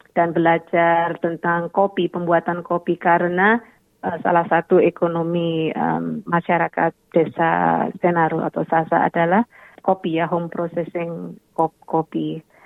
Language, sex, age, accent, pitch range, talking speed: Indonesian, female, 30-49, native, 170-185 Hz, 110 wpm